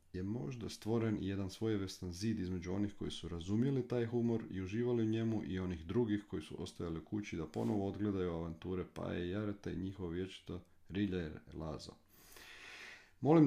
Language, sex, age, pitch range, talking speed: Croatian, male, 40-59, 90-105 Hz, 175 wpm